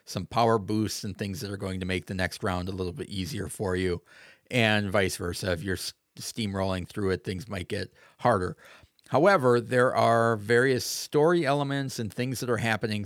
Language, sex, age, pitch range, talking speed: English, male, 40-59, 100-125 Hz, 195 wpm